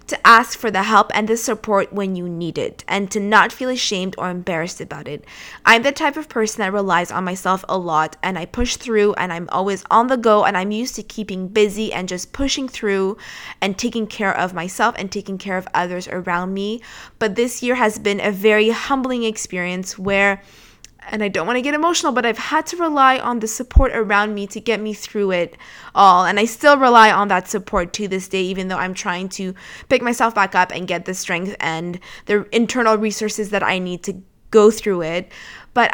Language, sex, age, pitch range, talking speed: English, female, 20-39, 185-225 Hz, 220 wpm